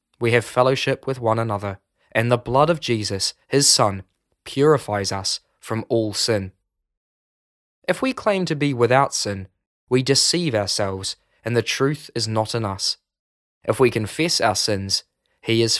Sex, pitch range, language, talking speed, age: male, 100-140 Hz, English, 160 wpm, 20-39